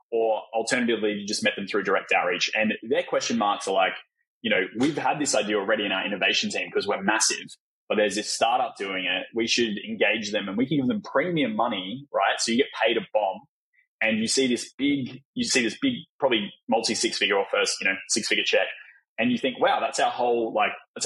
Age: 20-39